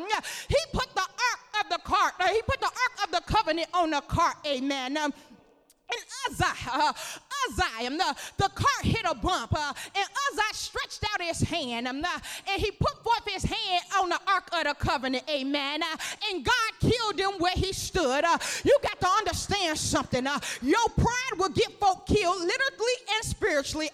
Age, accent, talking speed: 30-49, American, 195 wpm